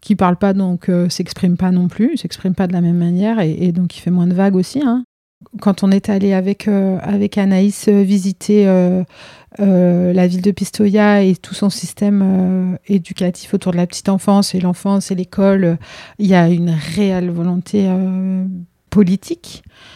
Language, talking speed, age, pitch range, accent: French, 195 wpm, 30-49, 180-205 Hz, French